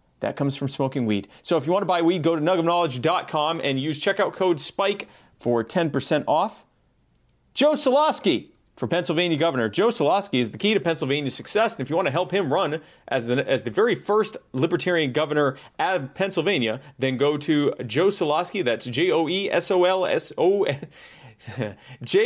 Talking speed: 190 wpm